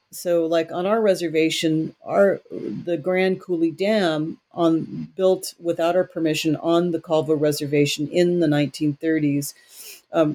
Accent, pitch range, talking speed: American, 150-170 Hz, 135 wpm